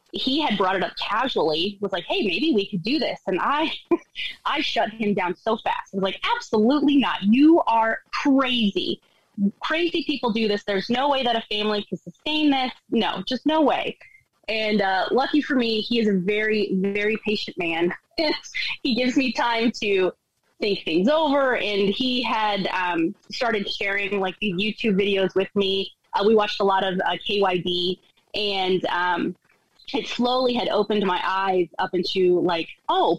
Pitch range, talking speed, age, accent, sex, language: 190-245 Hz, 180 wpm, 20-39, American, female, English